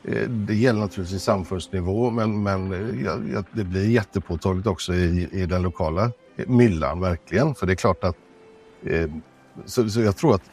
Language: Swedish